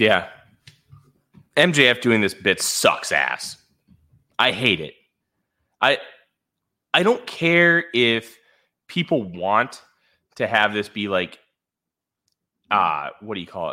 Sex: male